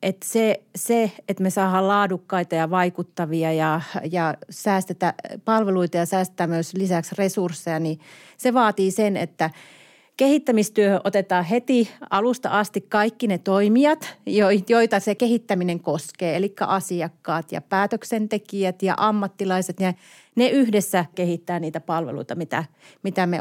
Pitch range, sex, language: 170-205 Hz, female, Finnish